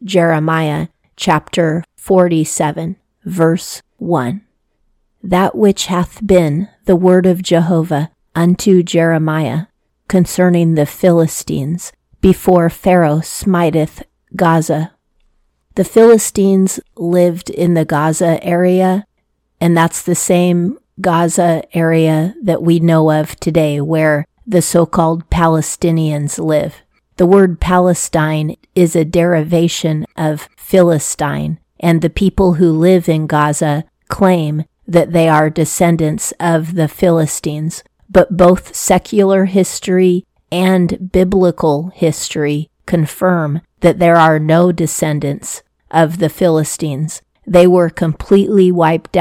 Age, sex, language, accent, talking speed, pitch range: 40-59, female, English, American, 105 wpm, 160-185 Hz